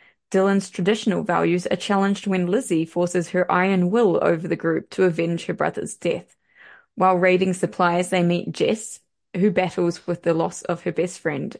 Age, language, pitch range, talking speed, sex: 20-39, English, 175-200 Hz, 175 wpm, female